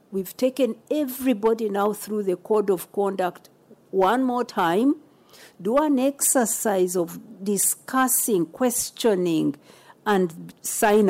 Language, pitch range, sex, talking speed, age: English, 190-250 Hz, female, 110 wpm, 50-69